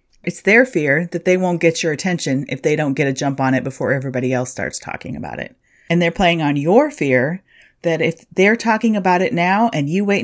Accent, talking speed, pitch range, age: American, 235 wpm, 140-200 Hz, 30-49